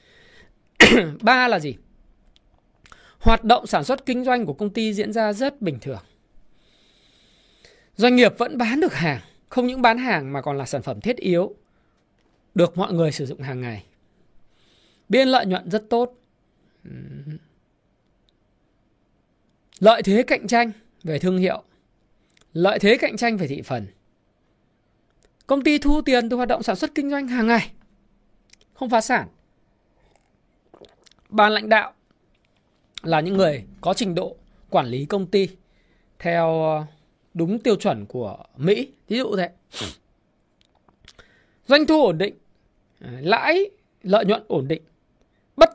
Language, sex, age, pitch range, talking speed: Vietnamese, male, 20-39, 155-245 Hz, 140 wpm